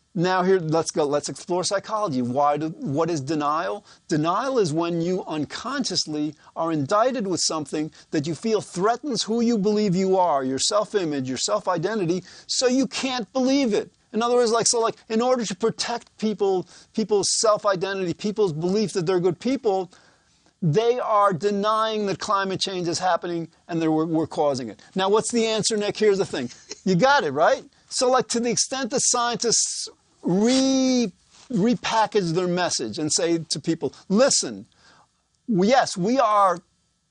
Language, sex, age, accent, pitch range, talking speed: English, male, 40-59, American, 170-225 Hz, 165 wpm